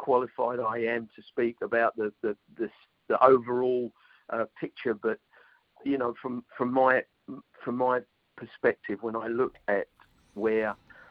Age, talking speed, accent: 50-69, 145 wpm, British